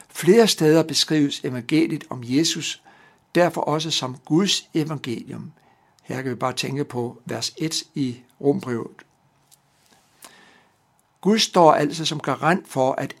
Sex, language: male, Danish